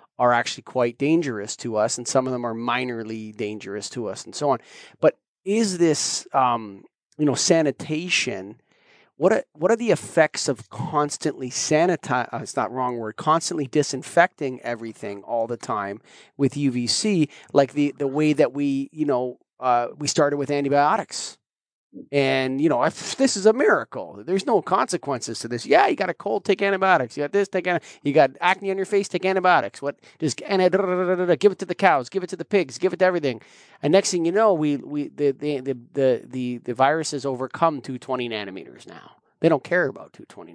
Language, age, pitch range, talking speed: English, 30-49, 130-190 Hz, 200 wpm